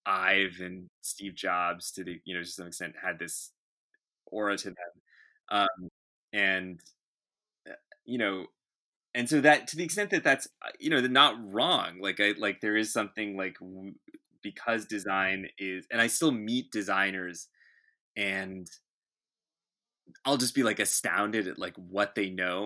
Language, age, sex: English, 20-39, male